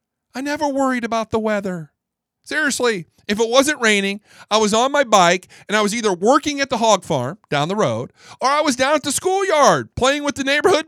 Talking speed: 215 wpm